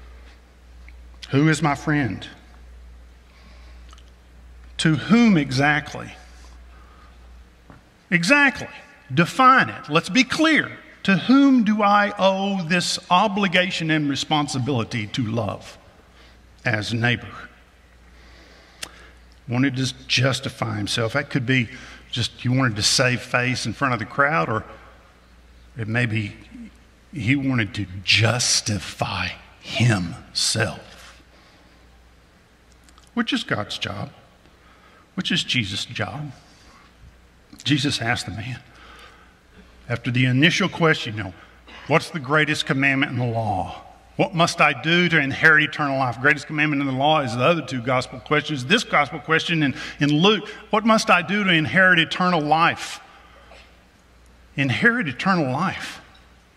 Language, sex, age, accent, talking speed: English, male, 50-69, American, 120 wpm